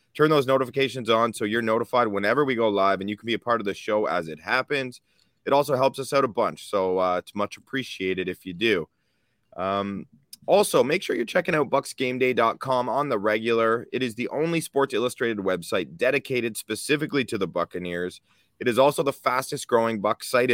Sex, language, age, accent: male, English, 30-49, American